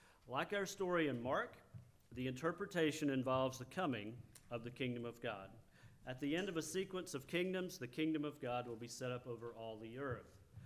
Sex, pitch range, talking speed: male, 130-165 Hz, 195 wpm